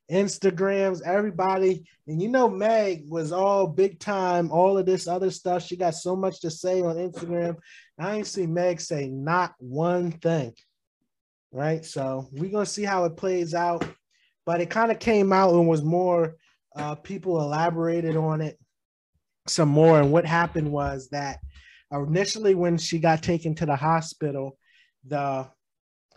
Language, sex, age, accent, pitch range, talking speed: English, male, 20-39, American, 135-175 Hz, 160 wpm